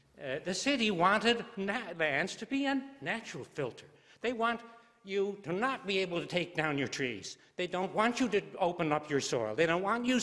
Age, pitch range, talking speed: 60-79, 155-235 Hz, 205 wpm